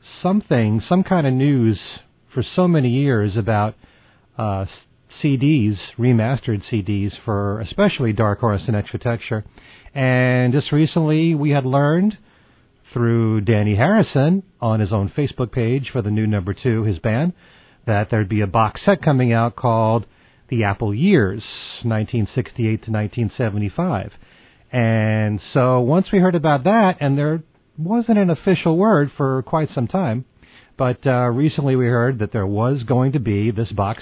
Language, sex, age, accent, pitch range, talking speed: English, male, 40-59, American, 110-145 Hz, 155 wpm